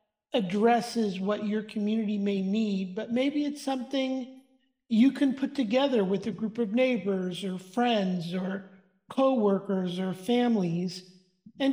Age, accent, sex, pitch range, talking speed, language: 50-69, American, male, 210-245 Hz, 135 wpm, English